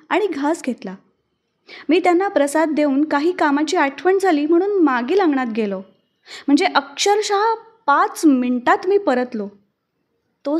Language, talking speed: Marathi, 125 wpm